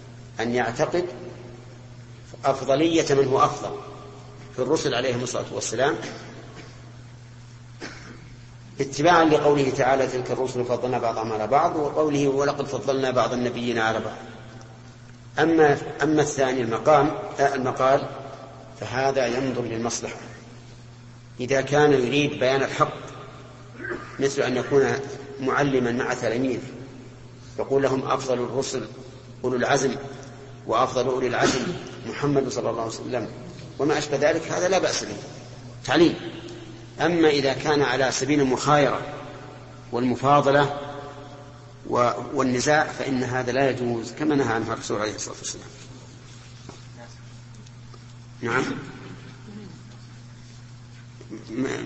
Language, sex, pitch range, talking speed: Arabic, male, 120-135 Hz, 100 wpm